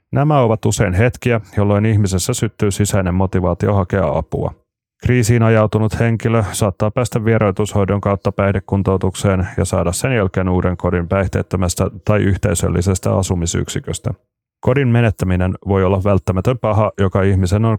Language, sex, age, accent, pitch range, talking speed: Finnish, male, 30-49, native, 95-110 Hz, 130 wpm